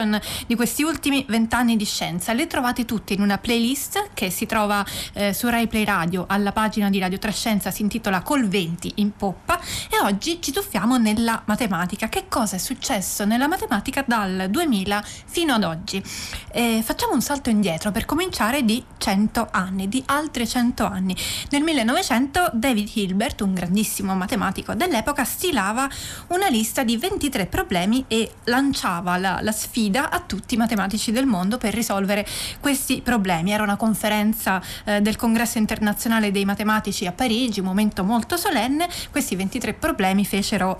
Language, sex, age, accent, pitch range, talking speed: Italian, female, 30-49, native, 200-260 Hz, 160 wpm